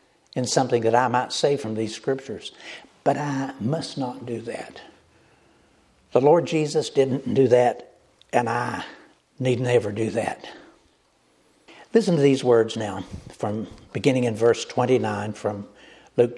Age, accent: 60-79, American